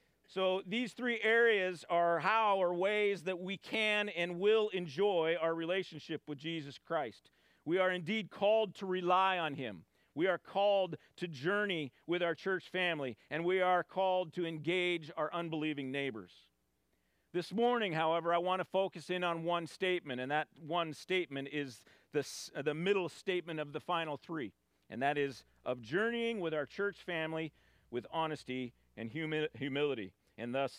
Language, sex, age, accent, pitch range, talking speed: English, male, 40-59, American, 120-190 Hz, 165 wpm